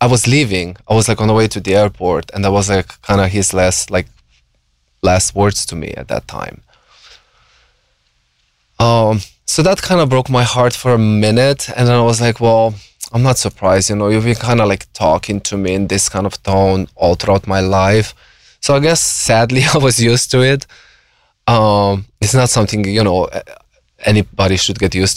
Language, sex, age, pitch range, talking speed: English, male, 20-39, 95-120 Hz, 205 wpm